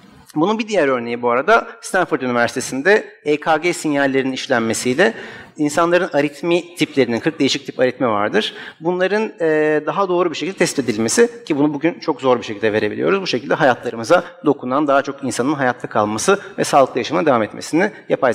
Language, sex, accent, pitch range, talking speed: Turkish, male, native, 125-180 Hz, 160 wpm